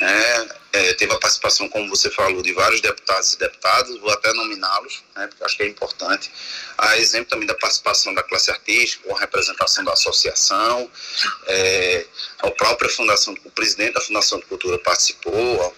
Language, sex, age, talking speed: Portuguese, male, 30-49, 180 wpm